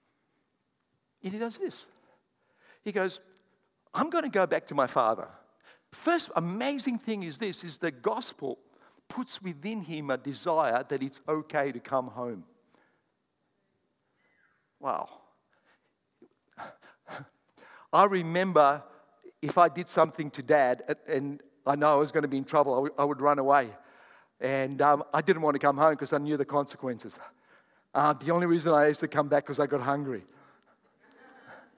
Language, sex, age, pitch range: English, male, 60-79, 140-190 Hz